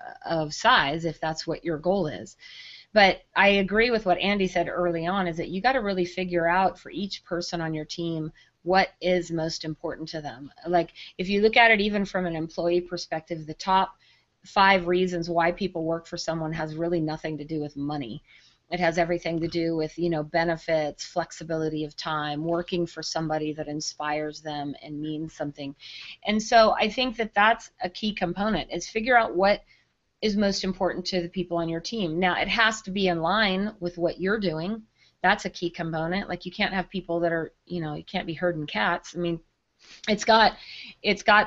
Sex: female